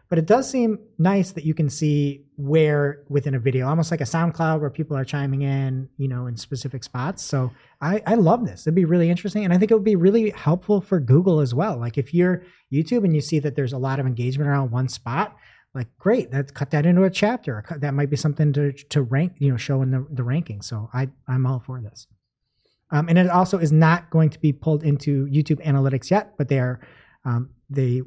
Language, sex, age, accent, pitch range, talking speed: English, male, 30-49, American, 130-165 Hz, 235 wpm